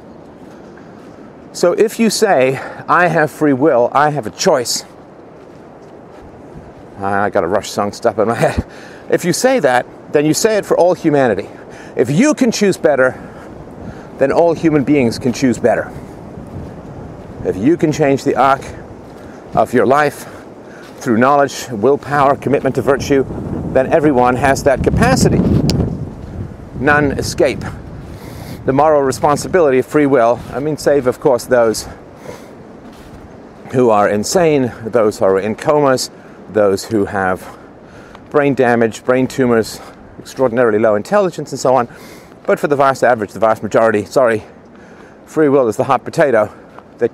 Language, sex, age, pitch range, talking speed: English, male, 50-69, 115-150 Hz, 145 wpm